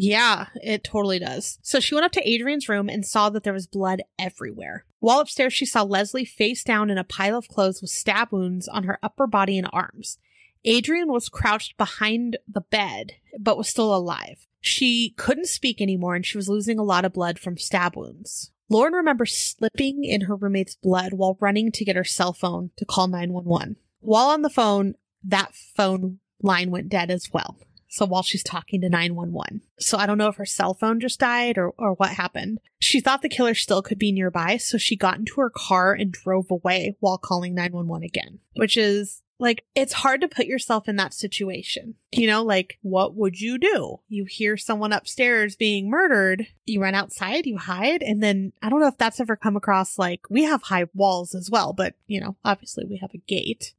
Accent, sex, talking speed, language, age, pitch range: American, female, 210 wpm, English, 30-49, 190-230 Hz